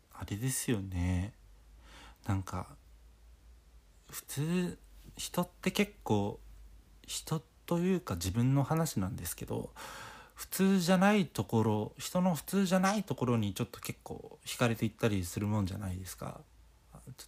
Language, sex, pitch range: Japanese, male, 95-130 Hz